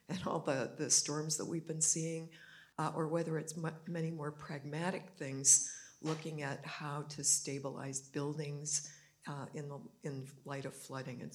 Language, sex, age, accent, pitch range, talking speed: English, female, 60-79, American, 145-165 Hz, 160 wpm